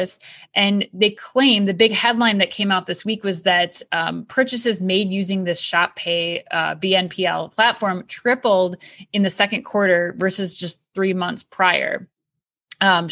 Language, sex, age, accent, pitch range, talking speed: English, female, 20-39, American, 180-215 Hz, 155 wpm